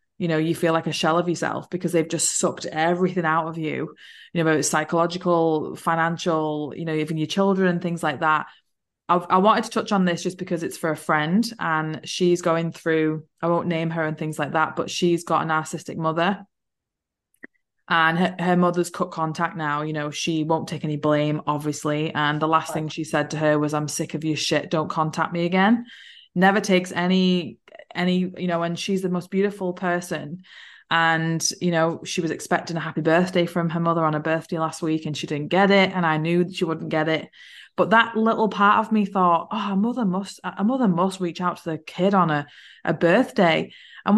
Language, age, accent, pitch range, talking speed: English, 20-39, British, 160-190 Hz, 215 wpm